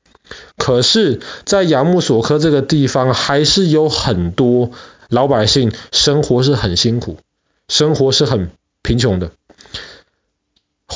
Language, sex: Chinese, male